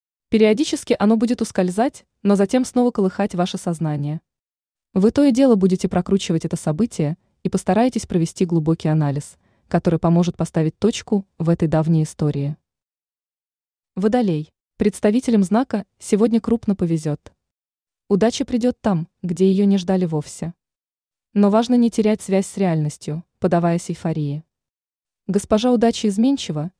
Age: 20-39